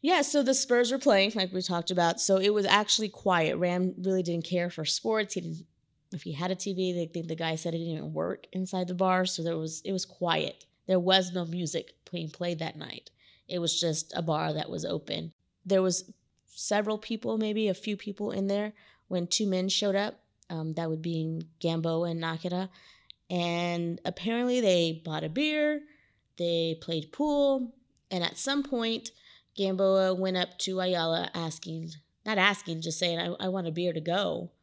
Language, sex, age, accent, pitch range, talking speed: English, female, 20-39, American, 165-195 Hz, 200 wpm